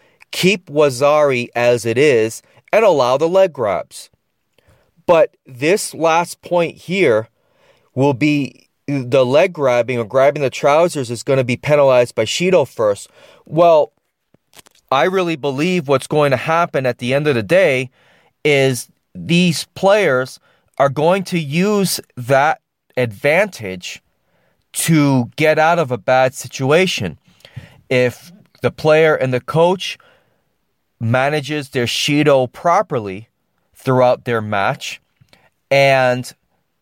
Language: English